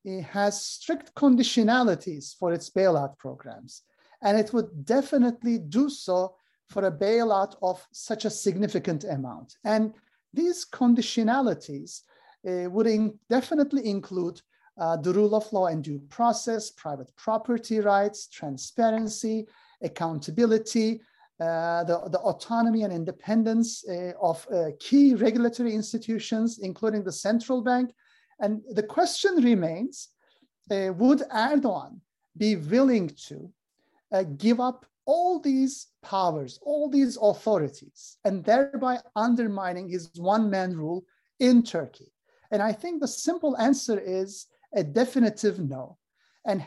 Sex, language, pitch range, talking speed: male, Turkish, 185-255 Hz, 125 wpm